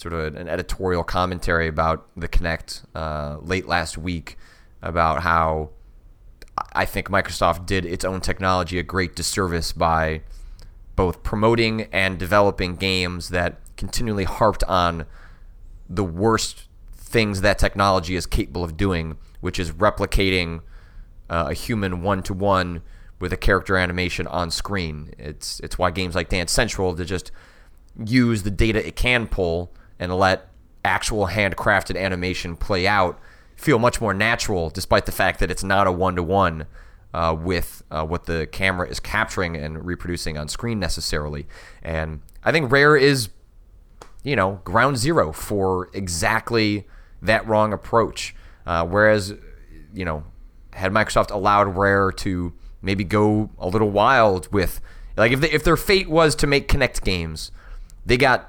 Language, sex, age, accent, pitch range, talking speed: English, male, 30-49, American, 85-100 Hz, 145 wpm